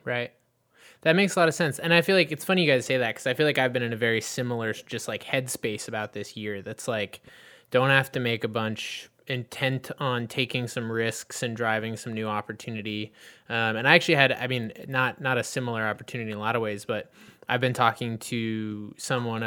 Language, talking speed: English, 230 wpm